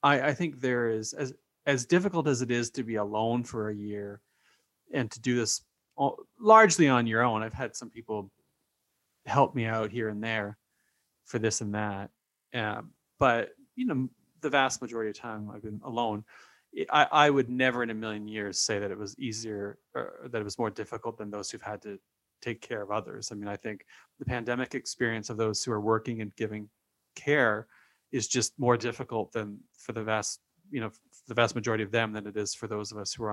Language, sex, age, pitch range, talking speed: English, male, 30-49, 105-130 Hz, 215 wpm